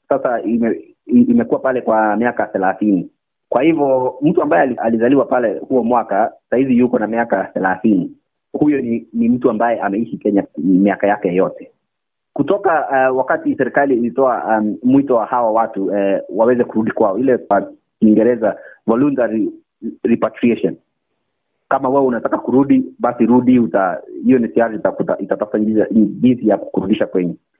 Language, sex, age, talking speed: Swahili, male, 30-49, 135 wpm